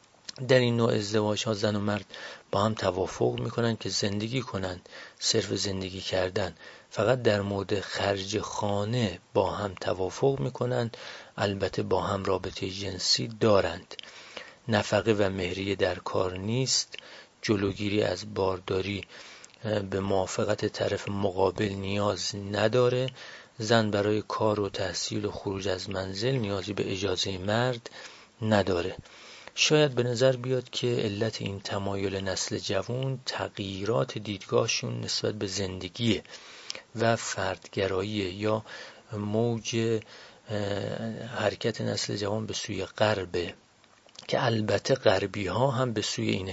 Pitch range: 95-115 Hz